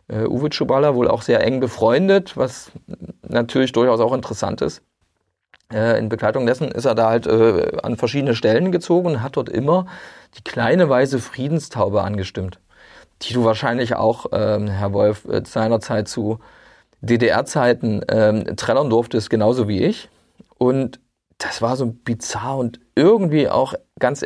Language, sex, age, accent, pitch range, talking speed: German, male, 40-59, German, 115-145 Hz, 150 wpm